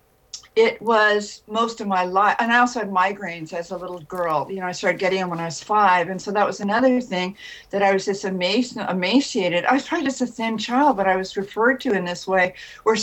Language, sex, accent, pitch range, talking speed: English, female, American, 190-230 Hz, 245 wpm